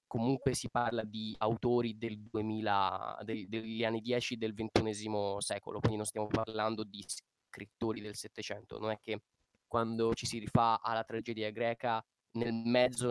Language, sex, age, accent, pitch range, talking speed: Italian, male, 20-39, native, 105-115 Hz, 155 wpm